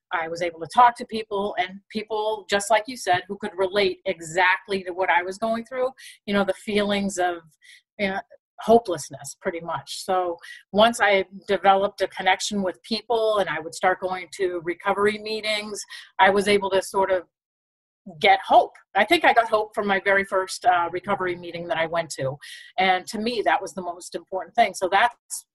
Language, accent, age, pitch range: English, American, 40-59, 180-215 Hz